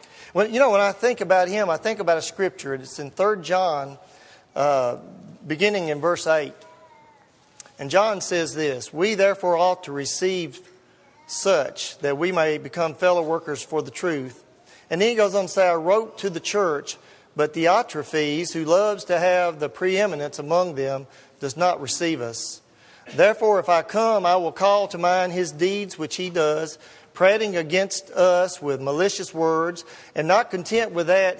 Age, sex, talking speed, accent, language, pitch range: 40-59, male, 180 wpm, American, English, 155-200 Hz